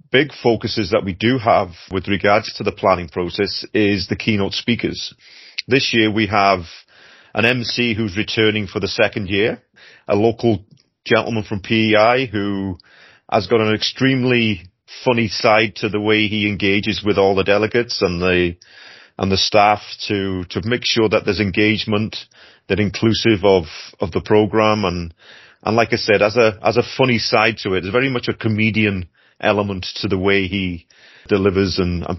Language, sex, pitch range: English, male, 100-115 Hz